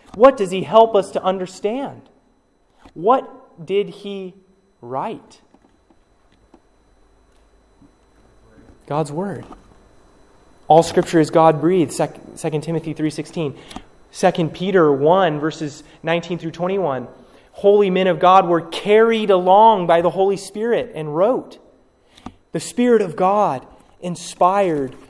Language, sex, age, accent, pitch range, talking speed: English, male, 30-49, American, 160-220 Hz, 115 wpm